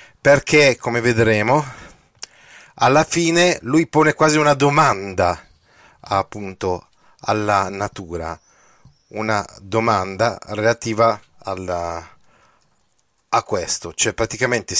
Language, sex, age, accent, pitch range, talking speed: Italian, male, 30-49, native, 105-145 Hz, 85 wpm